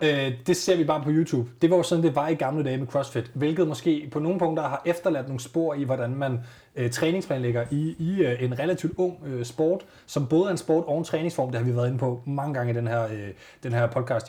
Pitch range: 120-160 Hz